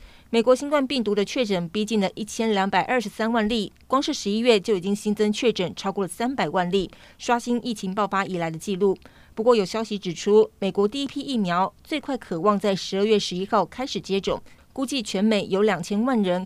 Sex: female